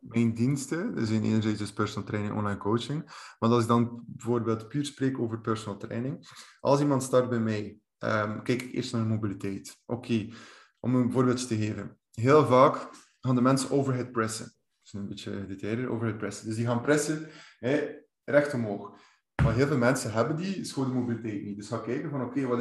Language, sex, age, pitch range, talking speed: Dutch, male, 20-39, 110-135 Hz, 200 wpm